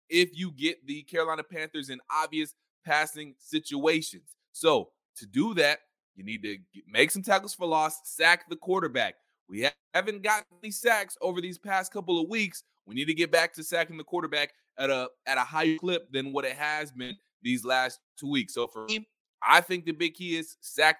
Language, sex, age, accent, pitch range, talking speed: English, male, 20-39, American, 130-180 Hz, 200 wpm